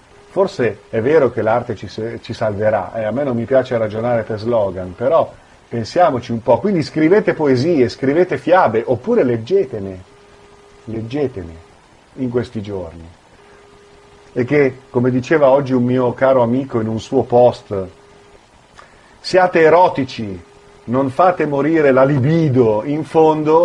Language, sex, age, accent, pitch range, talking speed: Italian, male, 40-59, native, 100-130 Hz, 140 wpm